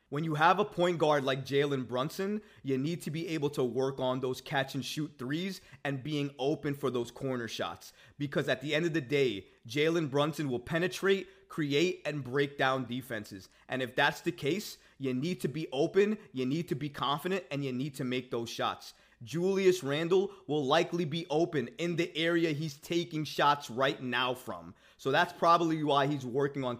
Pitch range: 135-175 Hz